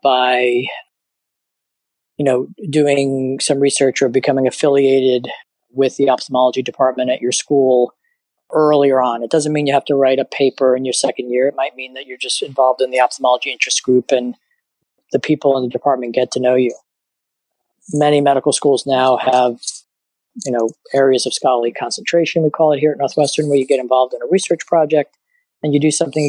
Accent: American